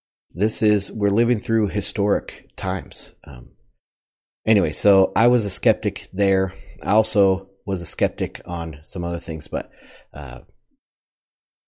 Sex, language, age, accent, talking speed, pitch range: male, English, 30-49, American, 135 wpm, 85-100 Hz